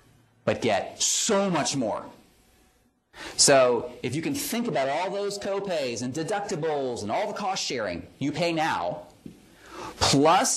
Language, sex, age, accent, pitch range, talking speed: English, male, 40-59, American, 130-215 Hz, 140 wpm